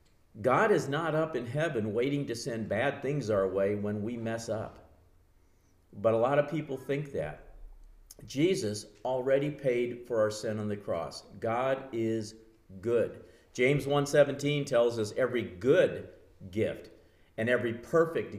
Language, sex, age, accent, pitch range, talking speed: English, male, 50-69, American, 110-140 Hz, 150 wpm